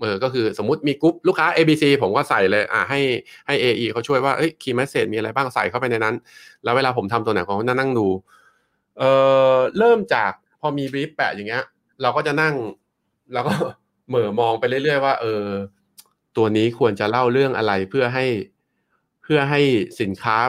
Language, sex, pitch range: Thai, male, 110-140 Hz